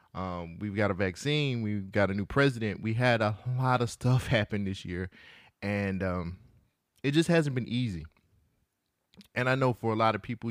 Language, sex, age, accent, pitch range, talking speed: English, male, 20-39, American, 95-125 Hz, 195 wpm